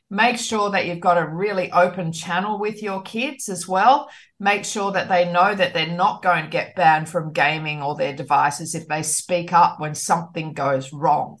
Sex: female